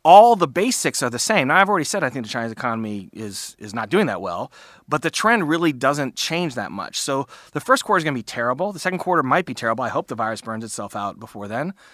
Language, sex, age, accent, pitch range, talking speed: English, male, 30-49, American, 110-150 Hz, 265 wpm